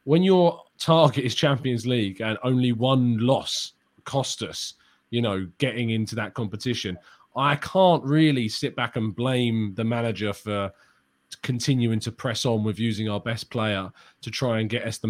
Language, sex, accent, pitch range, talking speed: English, male, British, 105-125 Hz, 170 wpm